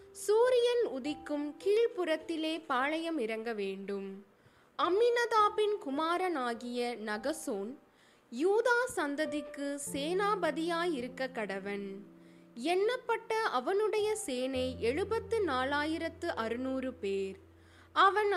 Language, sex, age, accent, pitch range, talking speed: Tamil, female, 20-39, native, 235-395 Hz, 60 wpm